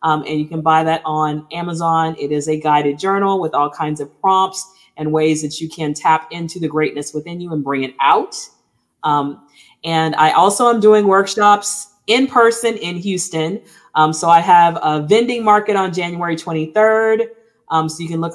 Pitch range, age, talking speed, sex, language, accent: 160-195 Hz, 30-49, 195 wpm, female, English, American